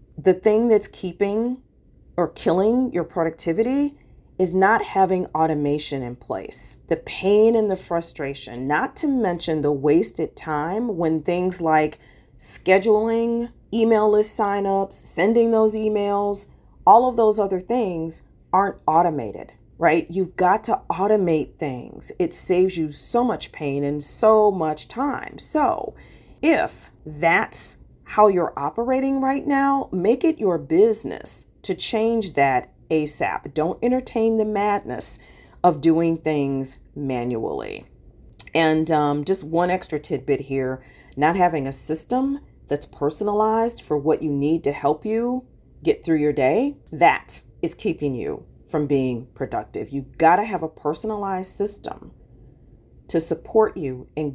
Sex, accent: female, American